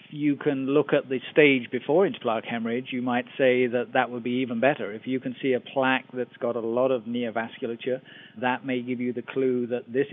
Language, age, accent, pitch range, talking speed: English, 40-59, British, 115-130 Hz, 225 wpm